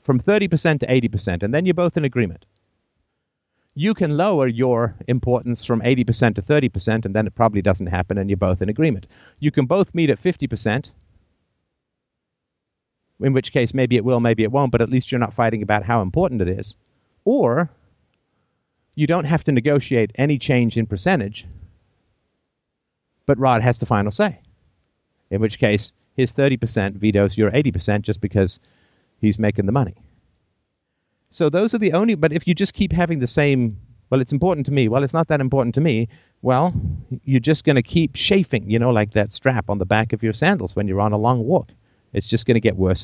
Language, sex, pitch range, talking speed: English, male, 105-145 Hz, 195 wpm